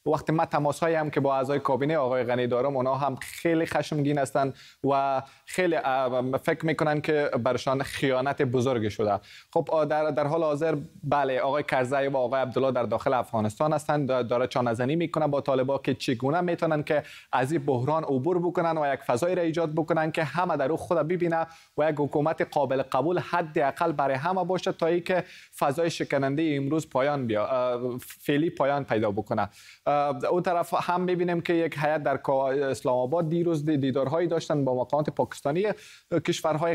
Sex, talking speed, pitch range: male, 170 wpm, 135-165 Hz